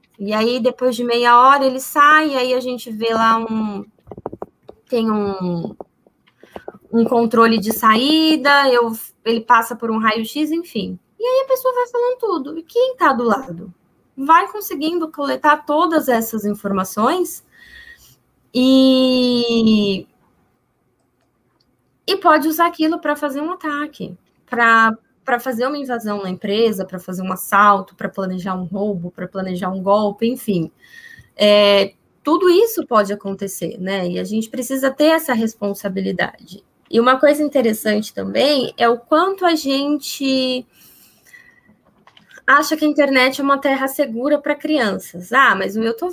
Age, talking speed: 10-29, 145 wpm